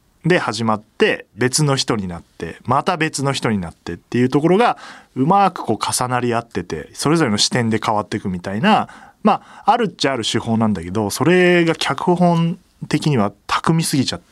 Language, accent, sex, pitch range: Japanese, native, male, 105-160 Hz